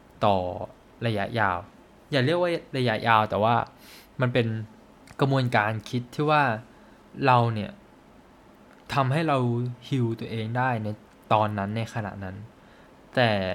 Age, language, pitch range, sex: 20-39, Thai, 110-135 Hz, male